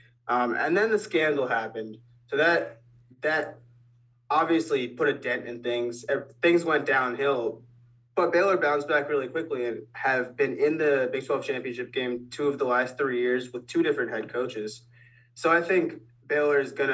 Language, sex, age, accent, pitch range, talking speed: English, male, 20-39, American, 120-165 Hz, 175 wpm